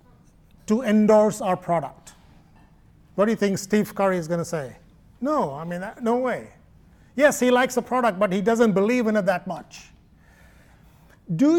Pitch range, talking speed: 180-235 Hz, 170 wpm